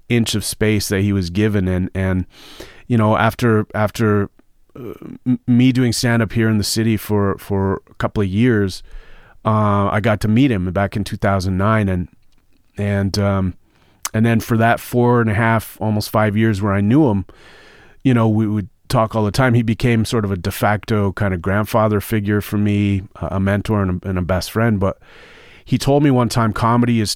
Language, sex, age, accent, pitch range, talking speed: English, male, 30-49, American, 100-115 Hz, 210 wpm